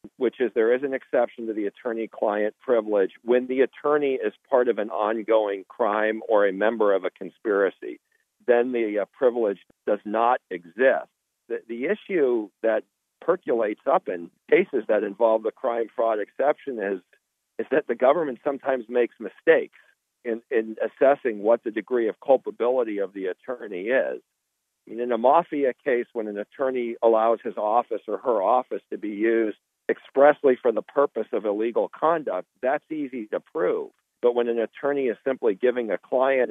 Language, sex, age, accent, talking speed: English, male, 50-69, American, 170 wpm